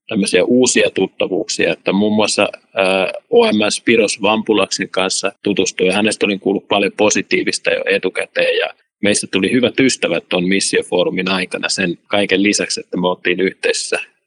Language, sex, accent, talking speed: Finnish, male, native, 145 wpm